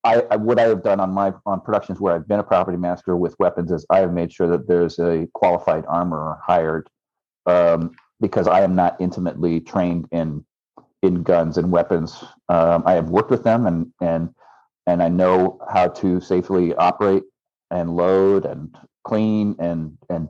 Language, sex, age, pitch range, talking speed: English, male, 40-59, 85-100 Hz, 185 wpm